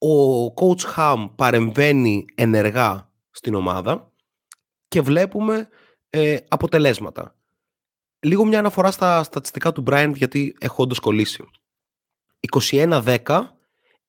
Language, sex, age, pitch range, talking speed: Greek, male, 30-49, 110-155 Hz, 95 wpm